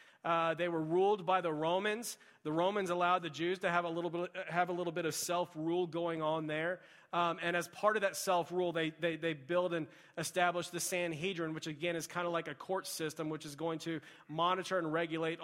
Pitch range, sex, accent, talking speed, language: 145-175 Hz, male, American, 220 wpm, English